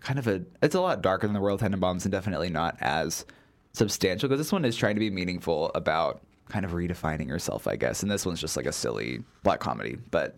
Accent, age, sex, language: American, 20-39, male, English